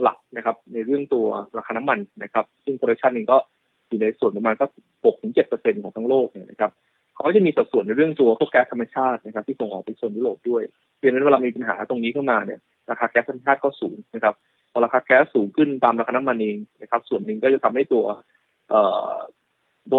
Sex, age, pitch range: male, 20-39, 115-155 Hz